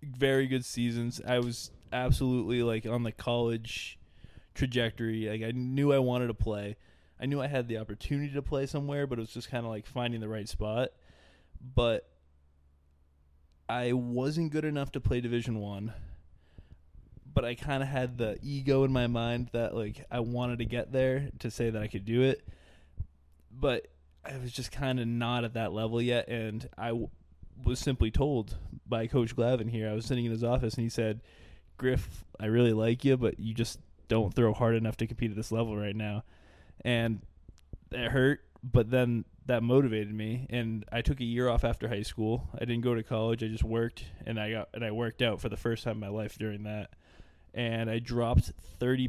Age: 20-39